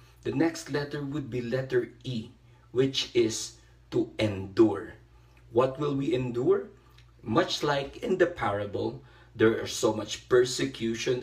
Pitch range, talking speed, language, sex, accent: 115-150 Hz, 135 wpm, Filipino, male, native